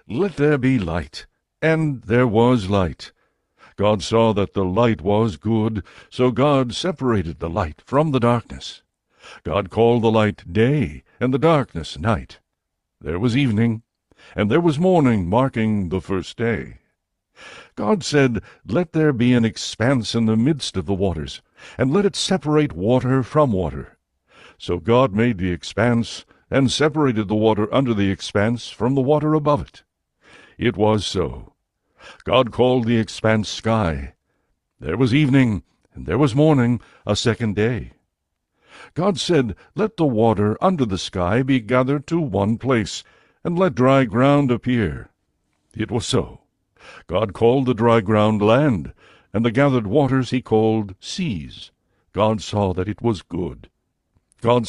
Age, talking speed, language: 60-79, 155 wpm, English